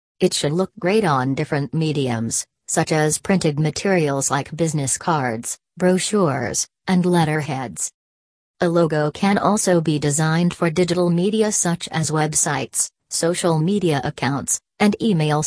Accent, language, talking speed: American, English, 130 wpm